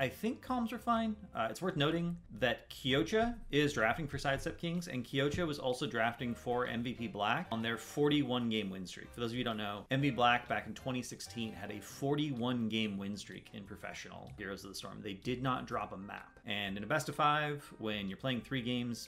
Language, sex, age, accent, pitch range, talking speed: English, male, 30-49, American, 105-140 Hz, 210 wpm